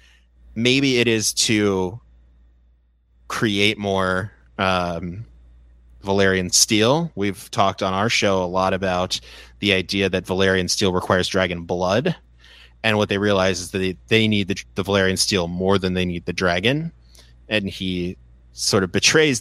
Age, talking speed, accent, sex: 30-49, 150 wpm, American, male